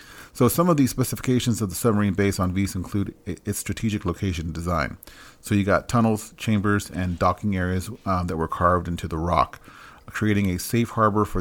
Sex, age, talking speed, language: male, 40-59, 190 wpm, English